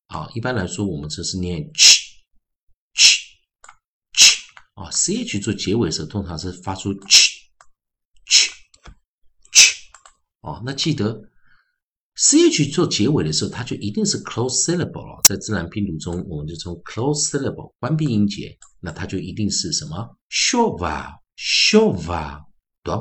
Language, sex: Chinese, male